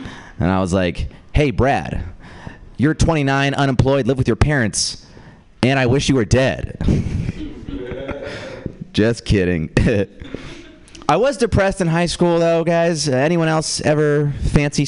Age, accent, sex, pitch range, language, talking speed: 30-49, American, male, 105-155 Hz, English, 135 wpm